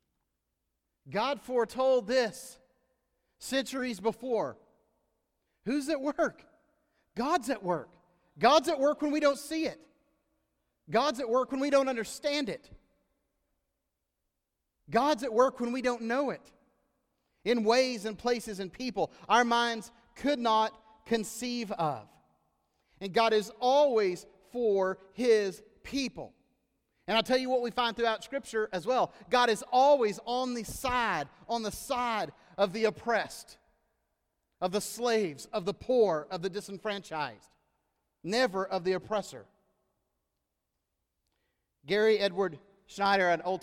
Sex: male